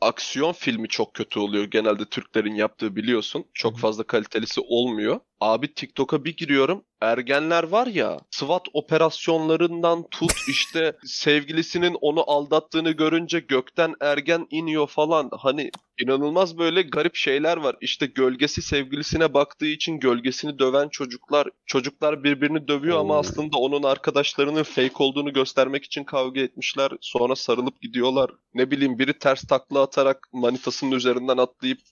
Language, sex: Turkish, male